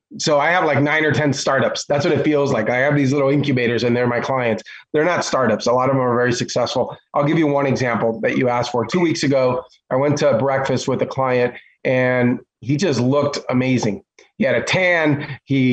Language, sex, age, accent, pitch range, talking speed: English, male, 30-49, American, 125-145 Hz, 235 wpm